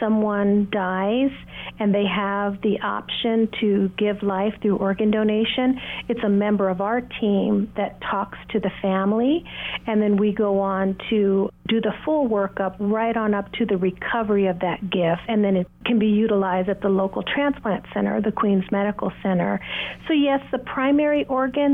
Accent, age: American, 50-69